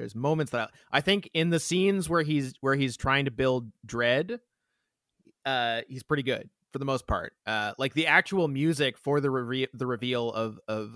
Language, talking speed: English, 205 wpm